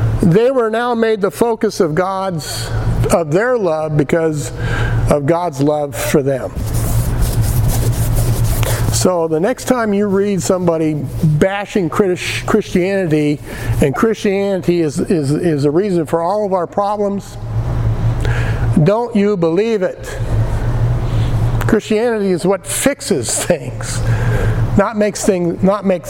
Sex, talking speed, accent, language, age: male, 115 wpm, American, English, 50-69